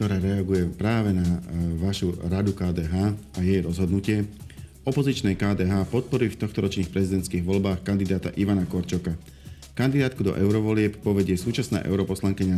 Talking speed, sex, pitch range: 125 wpm, male, 90-105 Hz